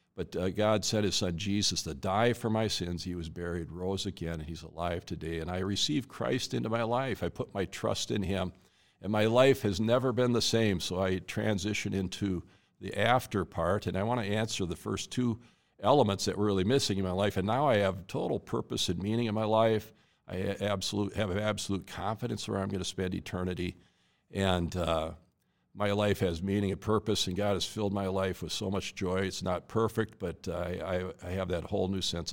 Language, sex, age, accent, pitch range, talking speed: English, male, 50-69, American, 90-105 Hz, 220 wpm